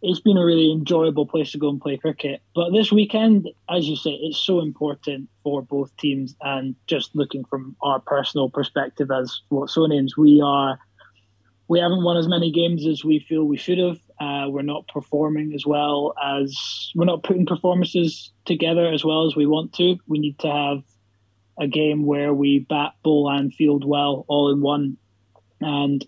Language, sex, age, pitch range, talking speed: English, male, 20-39, 135-155 Hz, 190 wpm